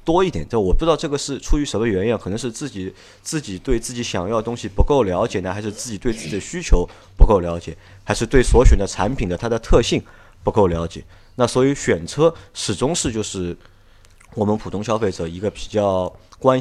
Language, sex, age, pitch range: Chinese, male, 30-49, 90-110 Hz